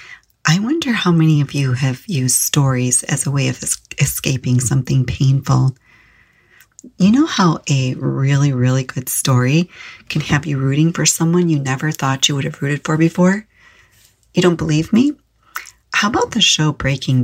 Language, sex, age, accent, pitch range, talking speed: English, female, 40-59, American, 135-175 Hz, 170 wpm